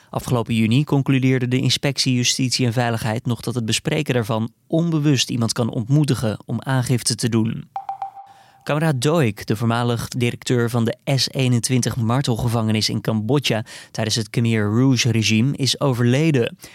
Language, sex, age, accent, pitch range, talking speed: Dutch, male, 20-39, Dutch, 115-140 Hz, 135 wpm